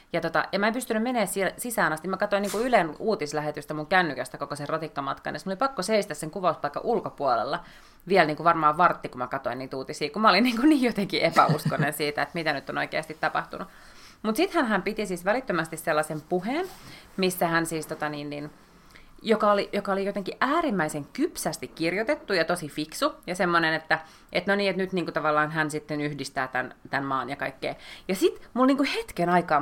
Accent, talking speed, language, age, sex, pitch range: native, 210 wpm, Finnish, 30-49, female, 150-200 Hz